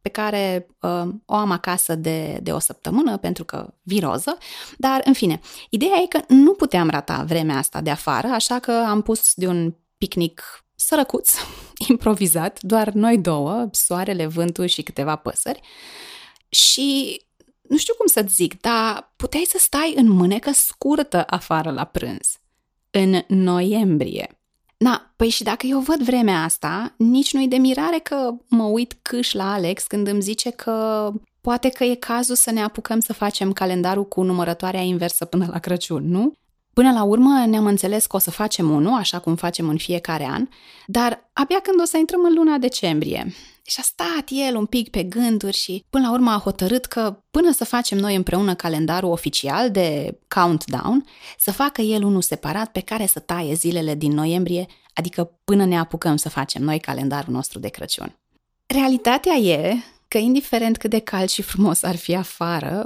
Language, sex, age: Romanian, female, 20-39